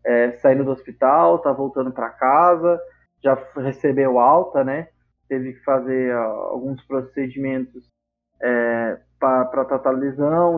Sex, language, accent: male, Portuguese, Brazilian